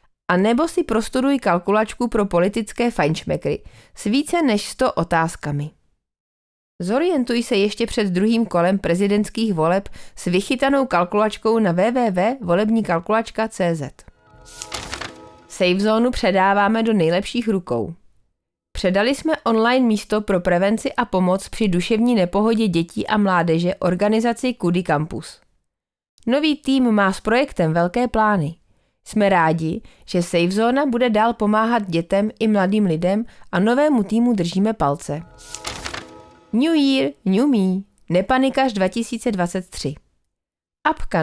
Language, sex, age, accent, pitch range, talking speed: Czech, female, 30-49, native, 180-235 Hz, 115 wpm